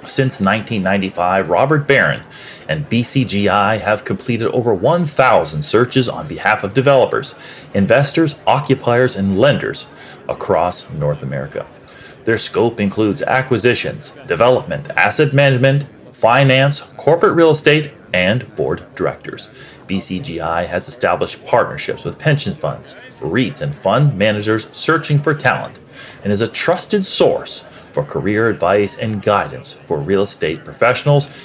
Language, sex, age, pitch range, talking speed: English, male, 30-49, 100-140 Hz, 120 wpm